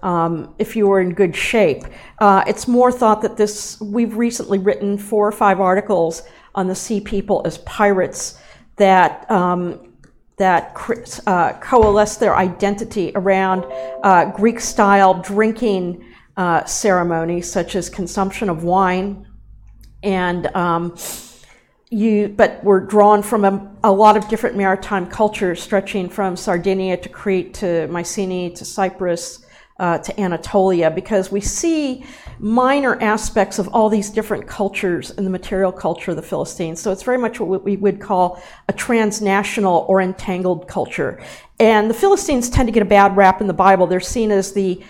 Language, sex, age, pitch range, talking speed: Greek, female, 50-69, 185-215 Hz, 155 wpm